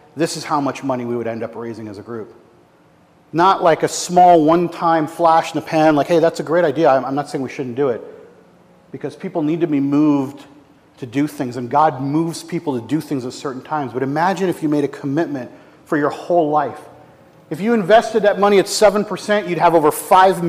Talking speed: 225 wpm